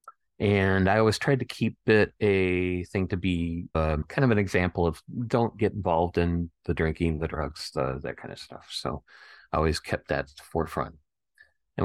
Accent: American